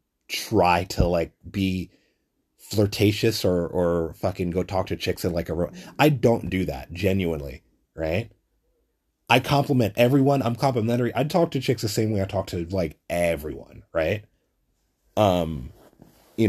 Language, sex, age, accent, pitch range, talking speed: English, male, 30-49, American, 85-125 Hz, 155 wpm